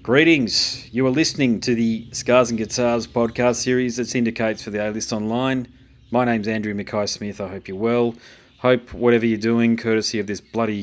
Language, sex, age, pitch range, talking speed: English, male, 30-49, 105-125 Hz, 190 wpm